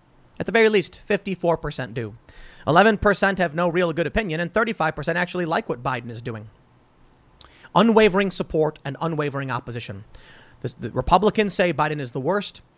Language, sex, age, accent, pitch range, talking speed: English, male, 30-49, American, 130-195 Hz, 155 wpm